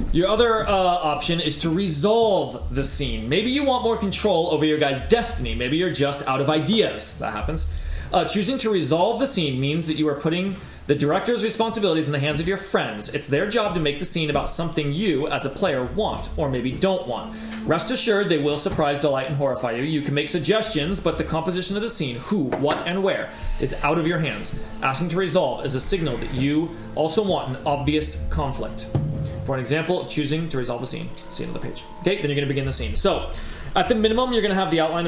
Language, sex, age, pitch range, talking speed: English, male, 30-49, 130-175 Hz, 230 wpm